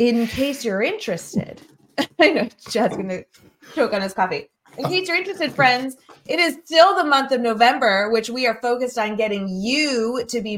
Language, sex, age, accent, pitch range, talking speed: English, female, 20-39, American, 185-240 Hz, 195 wpm